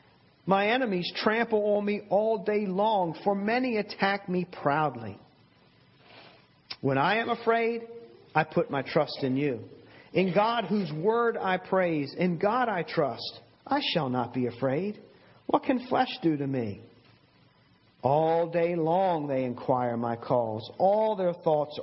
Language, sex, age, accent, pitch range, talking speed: English, male, 40-59, American, 125-185 Hz, 150 wpm